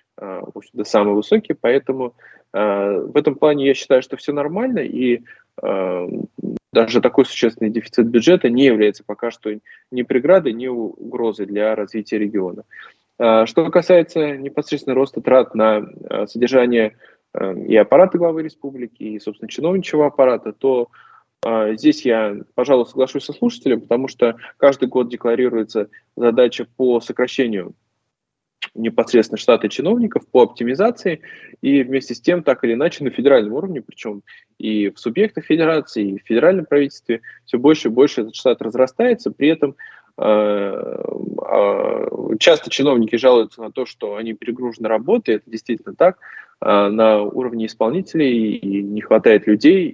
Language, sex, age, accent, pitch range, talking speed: Russian, male, 20-39, native, 110-150 Hz, 140 wpm